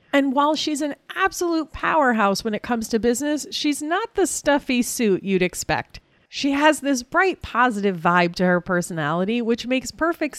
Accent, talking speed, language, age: American, 175 wpm, English, 30-49